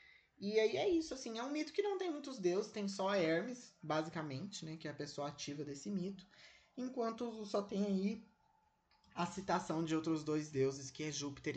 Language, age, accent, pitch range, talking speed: Portuguese, 20-39, Brazilian, 130-185 Hz, 200 wpm